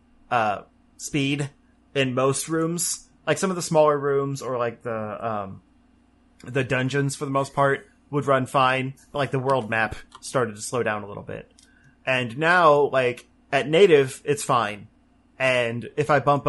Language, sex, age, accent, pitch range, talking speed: English, male, 30-49, American, 120-155 Hz, 170 wpm